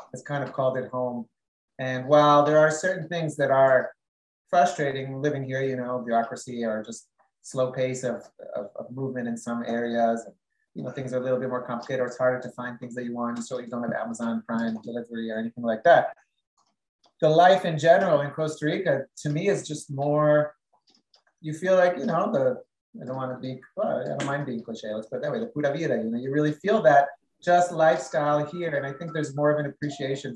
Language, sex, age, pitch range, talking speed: English, male, 30-49, 125-160 Hz, 220 wpm